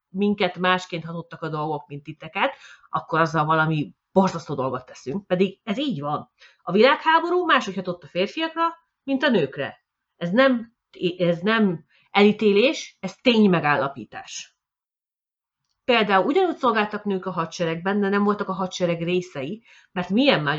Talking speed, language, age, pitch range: 145 wpm, Hungarian, 30-49, 165-255 Hz